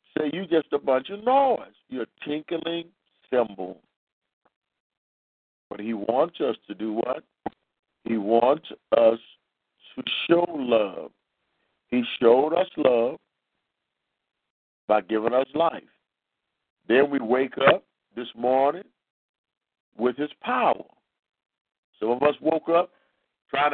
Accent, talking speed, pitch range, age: American, 115 wpm, 130-180 Hz, 50-69